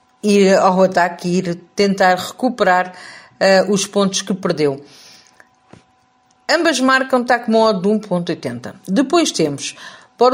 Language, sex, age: Portuguese, female, 50-69